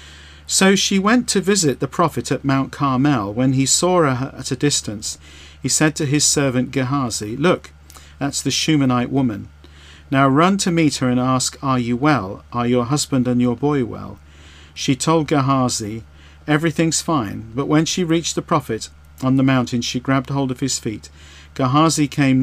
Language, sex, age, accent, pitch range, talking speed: English, male, 50-69, British, 105-145 Hz, 180 wpm